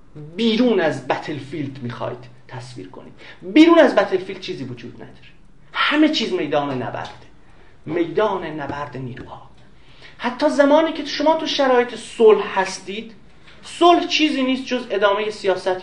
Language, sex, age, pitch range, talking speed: Persian, male, 40-59, 140-220 Hz, 125 wpm